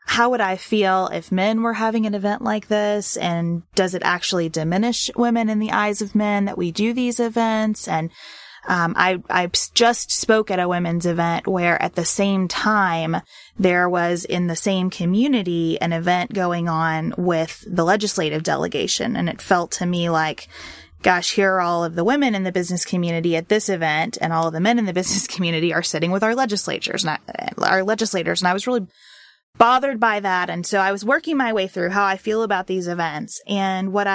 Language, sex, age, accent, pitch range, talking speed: English, female, 20-39, American, 175-225 Hz, 205 wpm